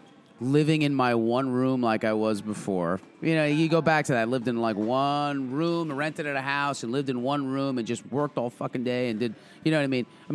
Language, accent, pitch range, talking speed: English, American, 110-150 Hz, 260 wpm